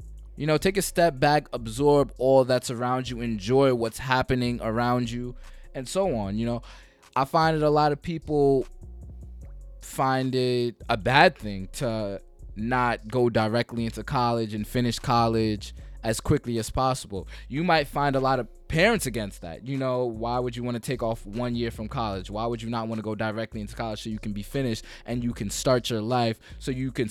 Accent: American